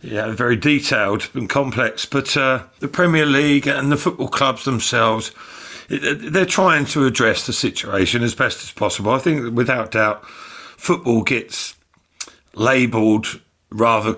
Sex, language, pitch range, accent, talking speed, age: male, English, 110-140 Hz, British, 140 wpm, 40-59